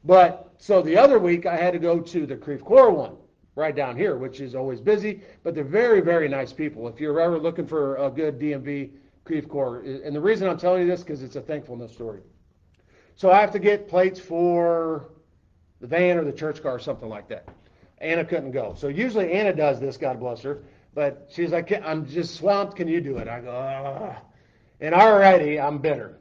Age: 50-69